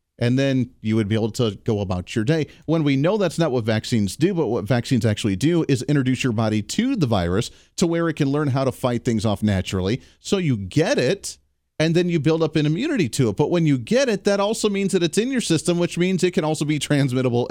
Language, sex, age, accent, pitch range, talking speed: English, male, 40-59, American, 120-170 Hz, 255 wpm